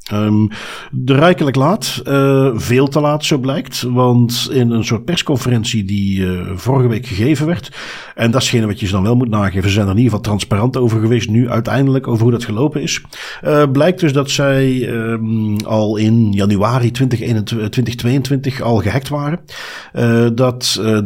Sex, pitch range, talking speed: male, 115-145 Hz, 180 wpm